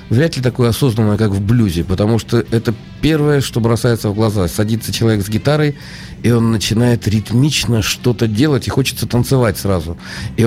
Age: 50-69